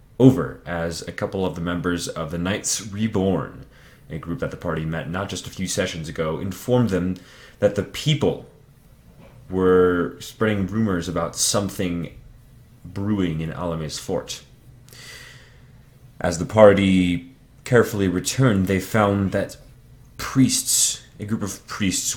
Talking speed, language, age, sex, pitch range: 135 wpm, English, 30-49, male, 90-125 Hz